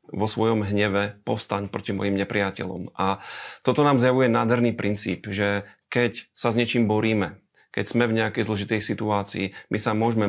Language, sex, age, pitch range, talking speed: Slovak, male, 30-49, 100-115 Hz, 165 wpm